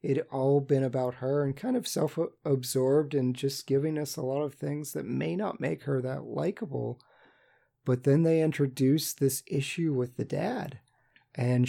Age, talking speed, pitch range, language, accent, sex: 30-49, 175 wpm, 125-145 Hz, English, American, male